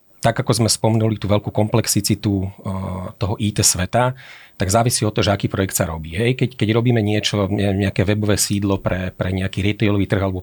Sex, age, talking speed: male, 40-59, 195 wpm